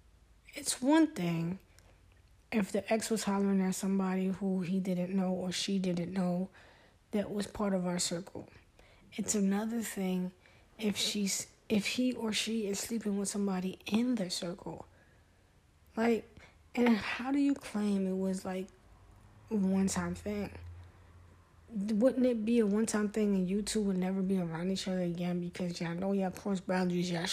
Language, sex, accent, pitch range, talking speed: English, female, American, 180-220 Hz, 170 wpm